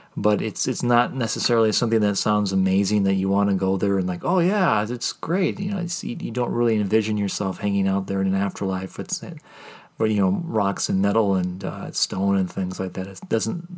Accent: American